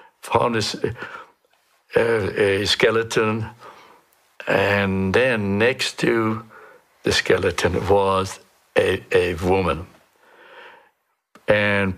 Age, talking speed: 60-79, 80 wpm